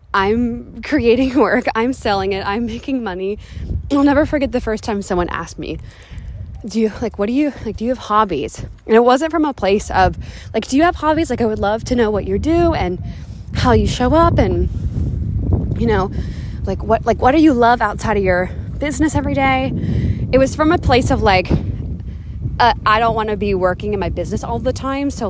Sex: female